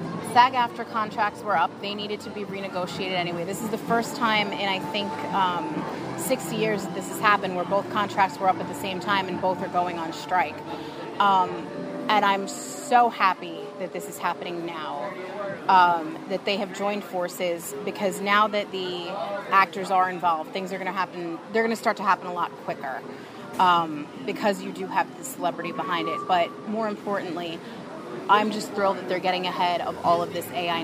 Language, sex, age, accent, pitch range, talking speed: English, female, 30-49, American, 180-210 Hz, 200 wpm